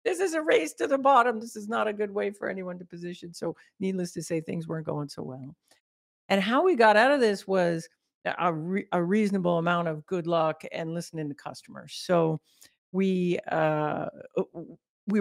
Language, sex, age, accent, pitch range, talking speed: English, female, 50-69, American, 155-195 Hz, 195 wpm